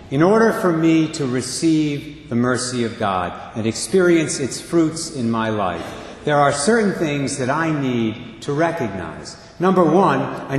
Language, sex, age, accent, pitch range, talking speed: English, male, 60-79, American, 125-175 Hz, 165 wpm